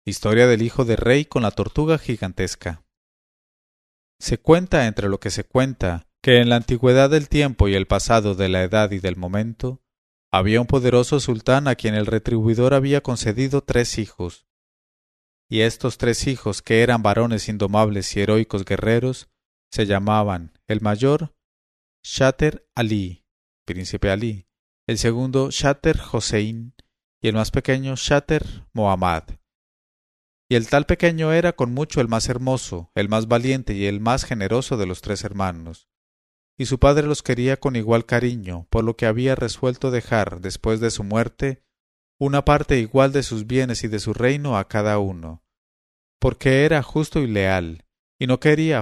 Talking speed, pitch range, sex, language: 160 wpm, 100-130 Hz, male, English